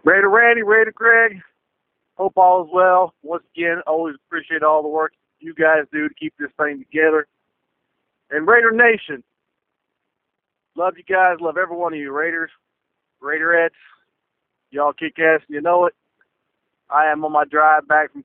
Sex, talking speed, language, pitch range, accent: male, 165 wpm, English, 155-185 Hz, American